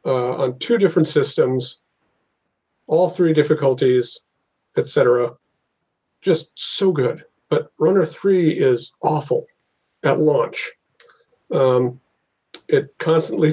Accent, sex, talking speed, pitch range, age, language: American, male, 100 wpm, 135-180 Hz, 40-59, English